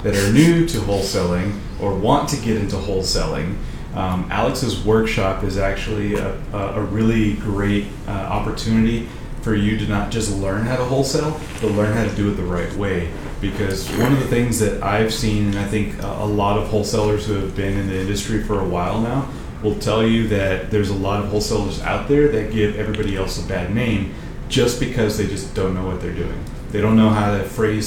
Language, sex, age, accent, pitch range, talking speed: English, male, 30-49, American, 95-110 Hz, 210 wpm